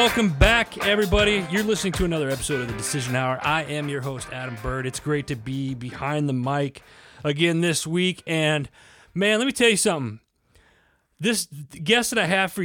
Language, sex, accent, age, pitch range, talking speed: English, male, American, 30-49, 135-185 Hz, 195 wpm